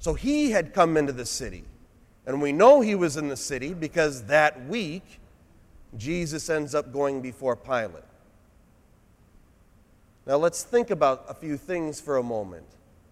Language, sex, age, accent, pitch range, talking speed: English, male, 30-49, American, 120-170 Hz, 155 wpm